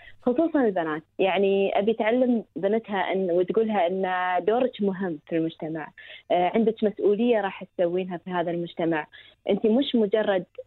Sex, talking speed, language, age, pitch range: female, 130 wpm, Arabic, 20-39, 175-225 Hz